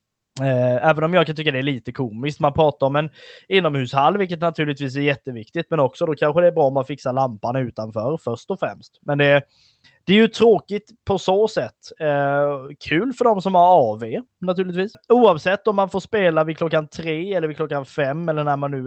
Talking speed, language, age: 215 wpm, Swedish, 20-39